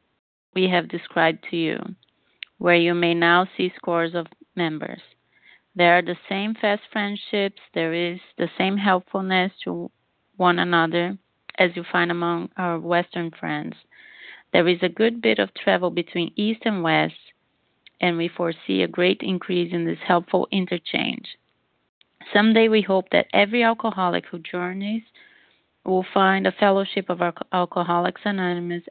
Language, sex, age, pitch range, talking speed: English, female, 30-49, 170-205 Hz, 145 wpm